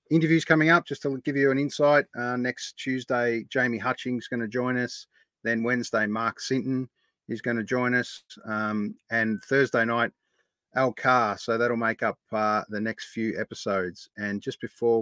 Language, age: English, 30-49